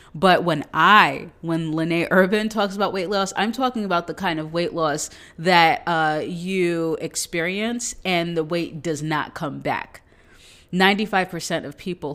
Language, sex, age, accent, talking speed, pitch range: English, female, 30-49, American, 160 wpm, 150-180 Hz